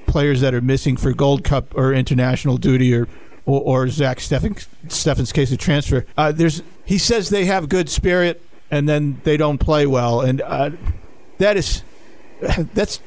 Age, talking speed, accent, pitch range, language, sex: 50-69, 175 wpm, American, 130-155 Hz, English, male